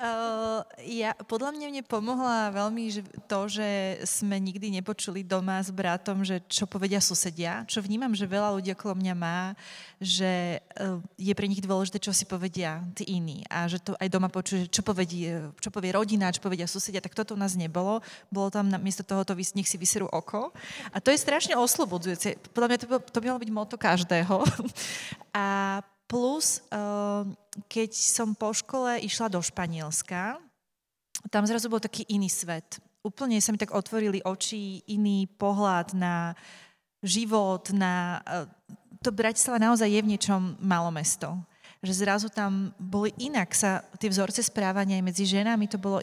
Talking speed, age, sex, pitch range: 155 wpm, 20-39, female, 185-215 Hz